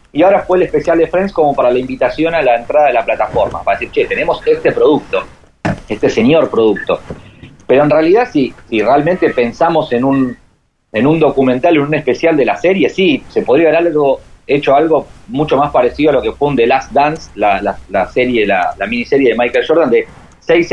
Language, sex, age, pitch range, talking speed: Spanish, male, 40-59, 120-175 Hz, 215 wpm